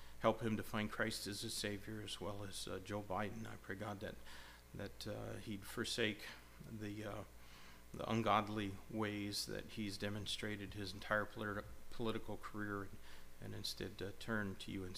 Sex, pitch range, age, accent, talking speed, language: male, 100-115 Hz, 40-59, American, 170 wpm, English